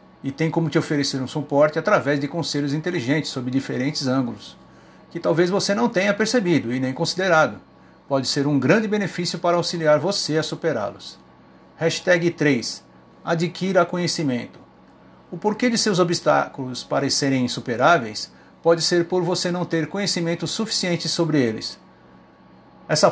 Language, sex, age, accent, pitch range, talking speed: Portuguese, male, 50-69, Brazilian, 140-180 Hz, 145 wpm